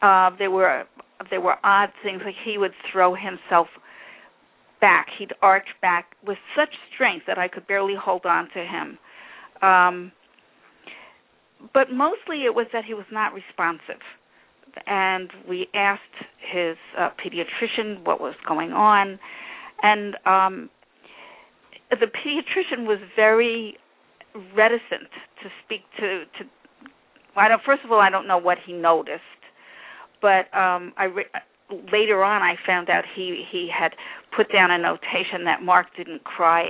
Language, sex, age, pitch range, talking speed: English, female, 50-69, 185-230 Hz, 145 wpm